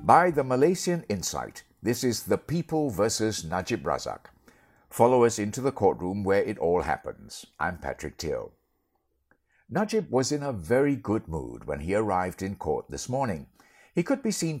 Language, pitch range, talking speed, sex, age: English, 100-155 Hz, 170 wpm, male, 60-79